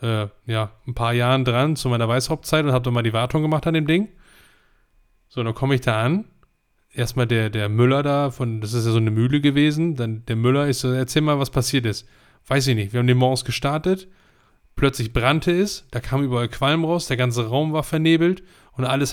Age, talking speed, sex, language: 10-29, 225 wpm, male, German